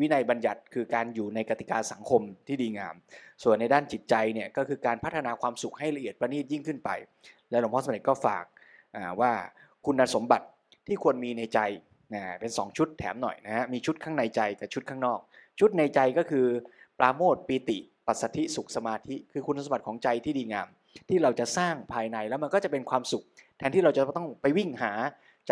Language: Thai